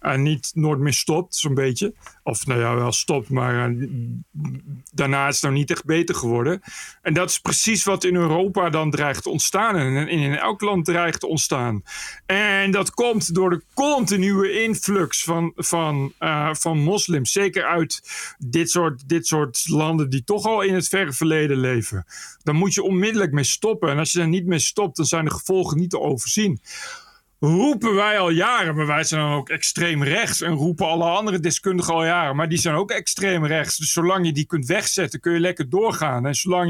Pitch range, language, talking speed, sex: 155-190 Hz, Dutch, 205 wpm, male